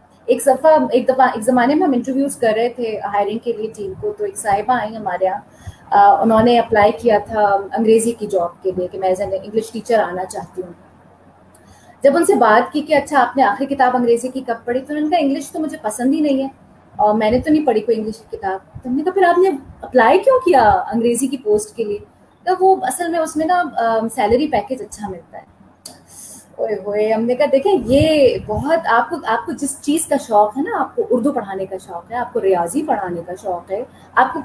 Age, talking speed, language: 30-49, 235 wpm, Urdu